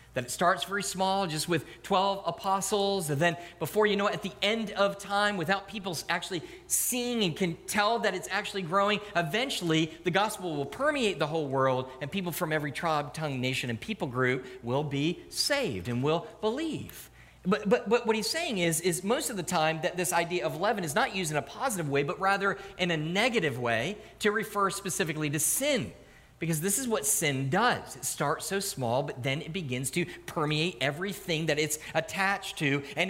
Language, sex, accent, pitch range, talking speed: English, male, American, 165-210 Hz, 205 wpm